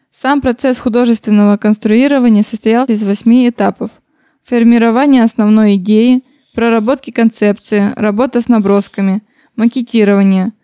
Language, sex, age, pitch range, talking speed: Russian, female, 20-39, 210-245 Hz, 95 wpm